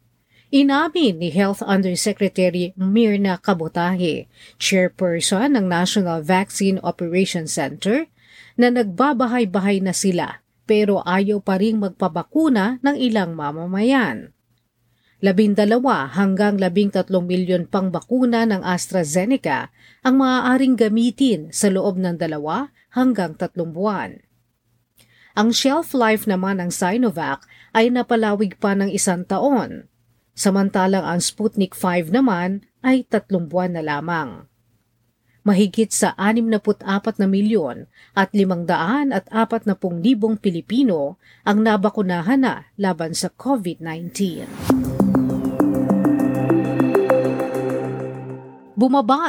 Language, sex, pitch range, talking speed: Filipino, female, 175-230 Hz, 110 wpm